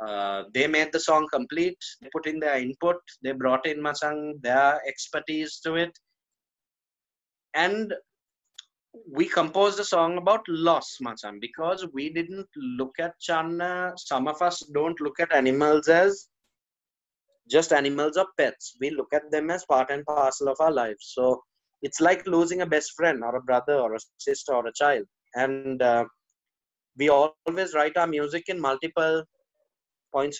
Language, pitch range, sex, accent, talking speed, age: English, 135-170 Hz, male, Indian, 160 wpm, 20-39